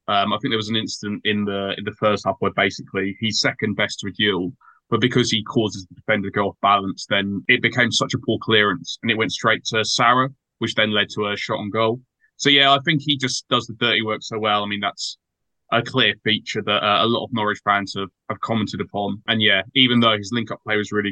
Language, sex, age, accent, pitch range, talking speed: English, male, 20-39, British, 105-120 Hz, 255 wpm